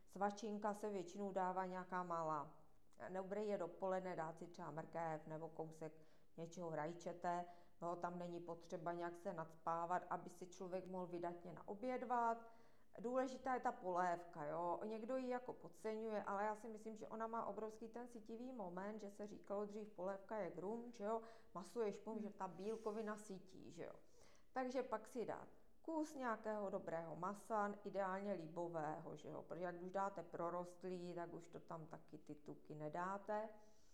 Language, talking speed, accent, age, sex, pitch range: Czech, 165 wpm, native, 40-59, female, 180-220 Hz